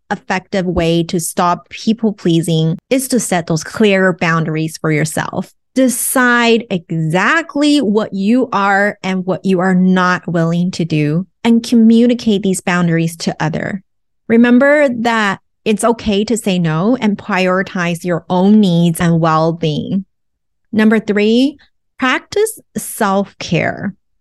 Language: English